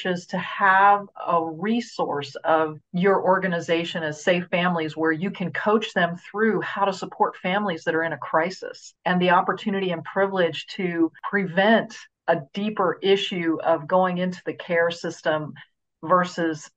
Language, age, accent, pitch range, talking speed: English, 40-59, American, 165-200 Hz, 150 wpm